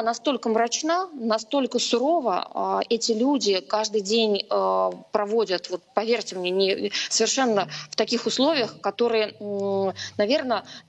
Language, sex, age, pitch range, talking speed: Russian, female, 20-39, 200-235 Hz, 105 wpm